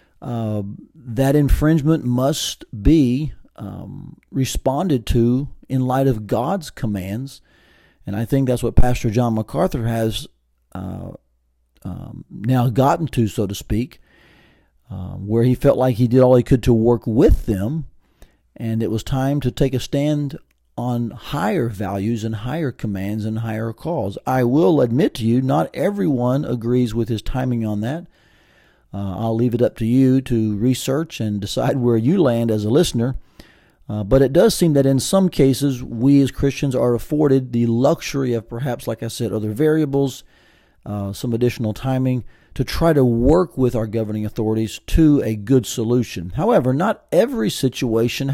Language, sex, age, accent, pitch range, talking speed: English, male, 40-59, American, 110-140 Hz, 165 wpm